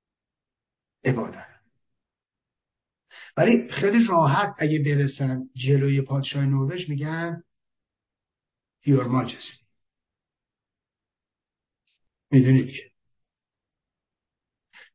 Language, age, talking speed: English, 50-69, 50 wpm